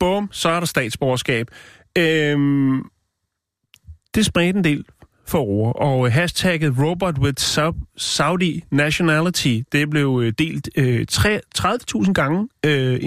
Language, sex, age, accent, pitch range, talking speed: Danish, male, 30-49, native, 115-150 Hz, 115 wpm